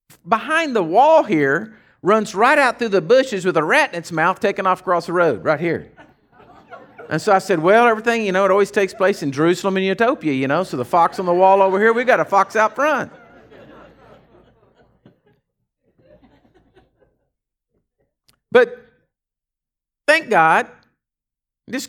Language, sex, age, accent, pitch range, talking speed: English, male, 50-69, American, 180-275 Hz, 160 wpm